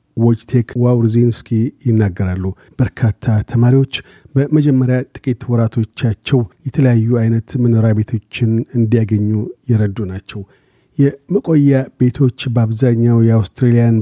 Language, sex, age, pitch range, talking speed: Amharic, male, 40-59, 115-130 Hz, 75 wpm